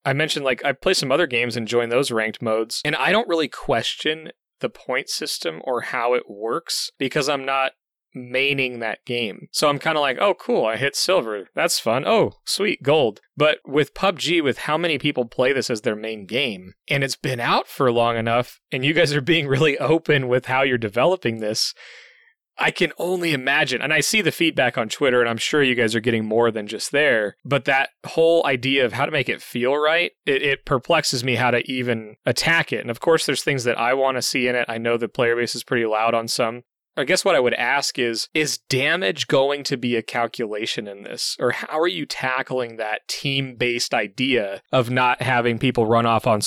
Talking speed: 225 wpm